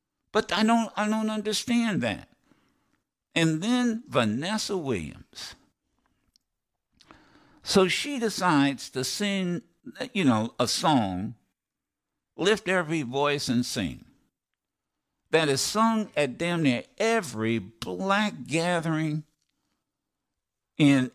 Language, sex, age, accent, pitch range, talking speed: English, male, 60-79, American, 115-190 Hz, 100 wpm